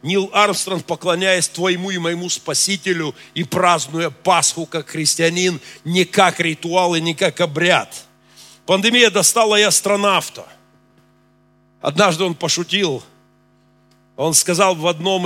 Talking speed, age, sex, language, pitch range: 120 wpm, 40-59, male, Russian, 135-185 Hz